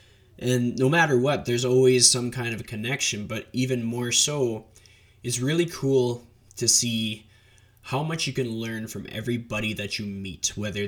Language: English